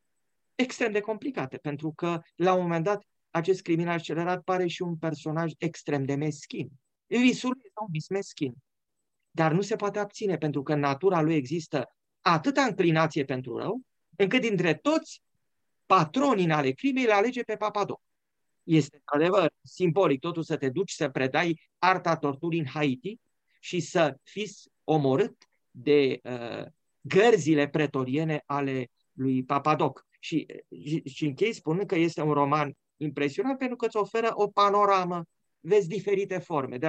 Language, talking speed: English, 145 wpm